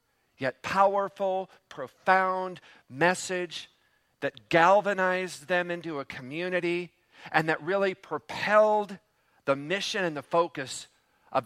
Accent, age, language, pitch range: American, 50-69, English, 155-200 Hz